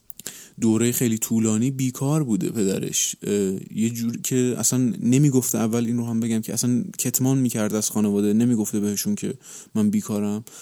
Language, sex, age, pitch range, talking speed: Persian, male, 30-49, 105-125 Hz, 160 wpm